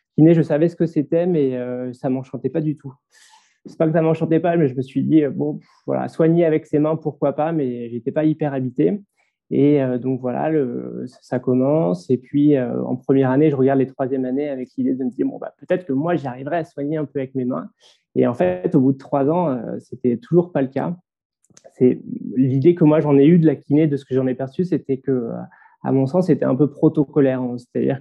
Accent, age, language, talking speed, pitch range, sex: French, 20-39, French, 245 wpm, 130-155 Hz, male